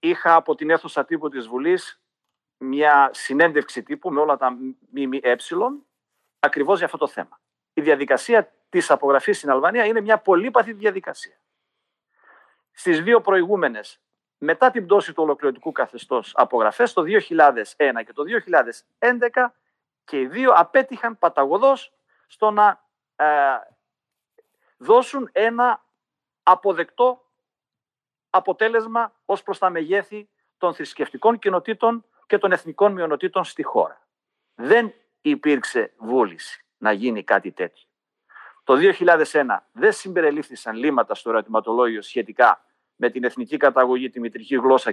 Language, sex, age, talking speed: Greek, male, 50-69, 125 wpm